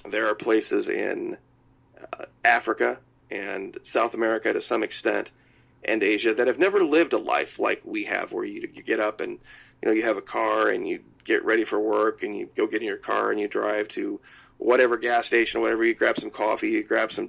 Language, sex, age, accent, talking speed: English, male, 30-49, American, 220 wpm